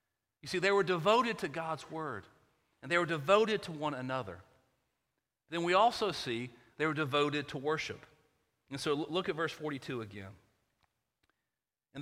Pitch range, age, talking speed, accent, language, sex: 135-175 Hz, 40-59, 160 wpm, American, English, male